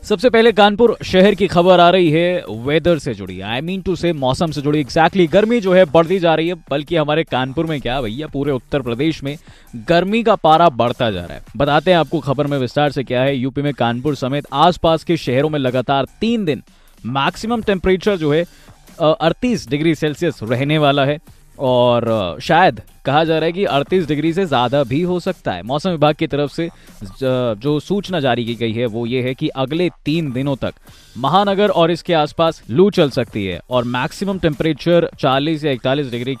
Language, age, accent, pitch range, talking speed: Hindi, 20-39, native, 130-170 Hz, 205 wpm